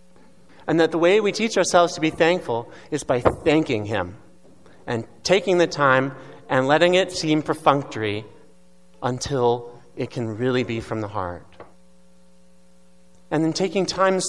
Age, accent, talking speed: 30-49, American, 145 wpm